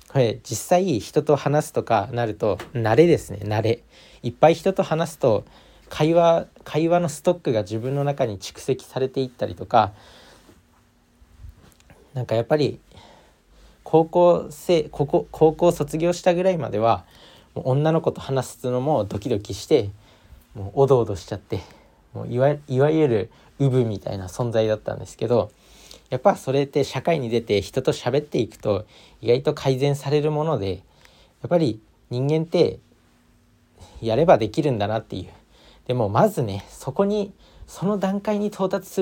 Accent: native